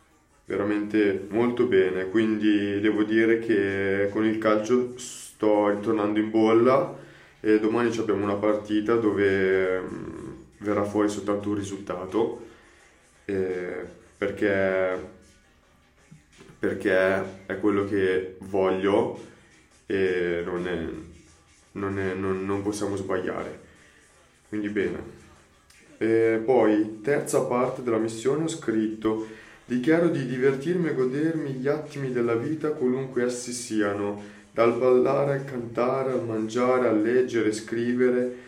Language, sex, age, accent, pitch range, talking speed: Italian, male, 20-39, native, 100-125 Hz, 110 wpm